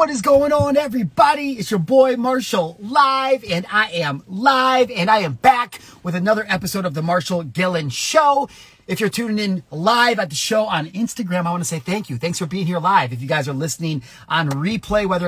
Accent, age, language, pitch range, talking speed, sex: American, 30-49, English, 150-205 Hz, 210 wpm, male